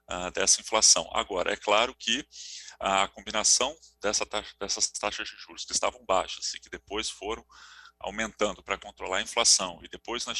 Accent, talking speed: Brazilian, 165 wpm